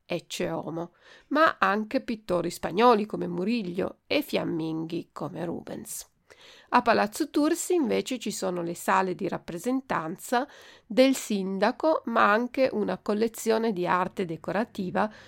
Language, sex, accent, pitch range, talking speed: Italian, female, native, 185-265 Hz, 120 wpm